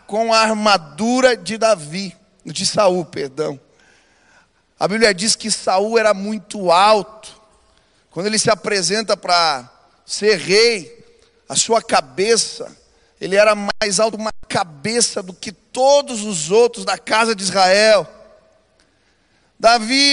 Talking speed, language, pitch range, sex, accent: 125 wpm, Polish, 195-230 Hz, male, Brazilian